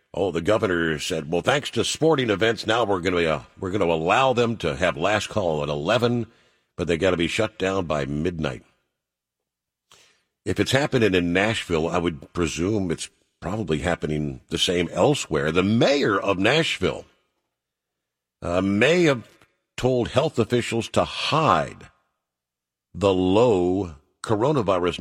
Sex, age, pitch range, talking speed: male, 50-69, 80-120 Hz, 145 wpm